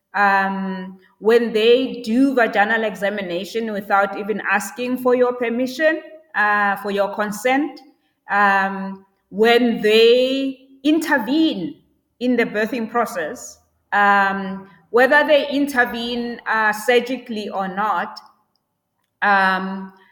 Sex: female